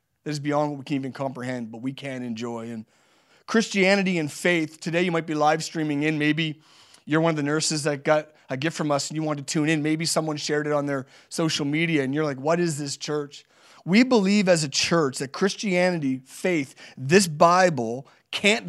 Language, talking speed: English, 215 wpm